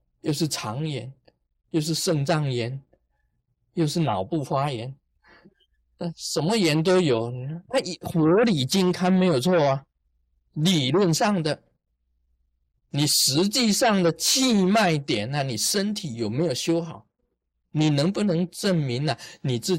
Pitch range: 110-175 Hz